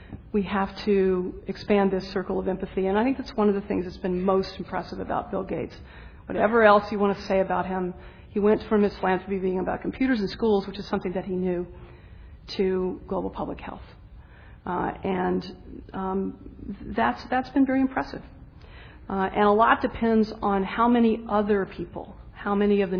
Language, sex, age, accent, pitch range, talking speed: English, female, 40-59, American, 190-220 Hz, 190 wpm